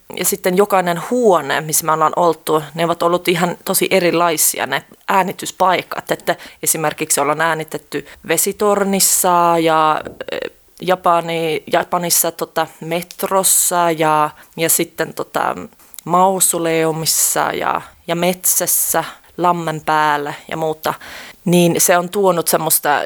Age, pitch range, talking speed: 30-49, 160-190 Hz, 110 wpm